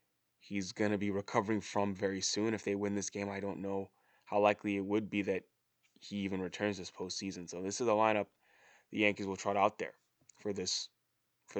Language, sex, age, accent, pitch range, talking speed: English, male, 10-29, American, 100-115 Hz, 205 wpm